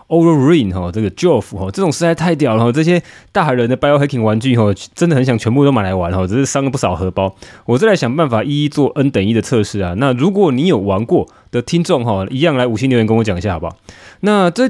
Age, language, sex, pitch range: 20-39, Chinese, male, 105-155 Hz